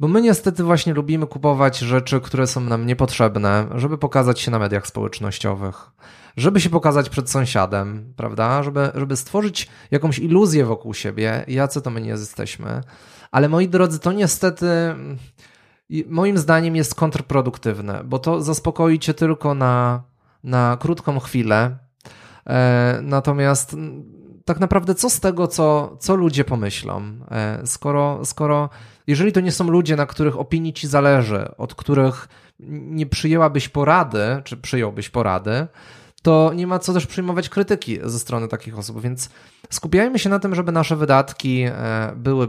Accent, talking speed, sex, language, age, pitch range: native, 145 wpm, male, Polish, 20-39, 115-160 Hz